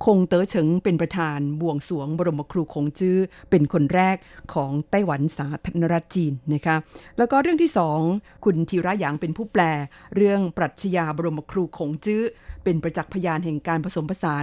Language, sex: Thai, female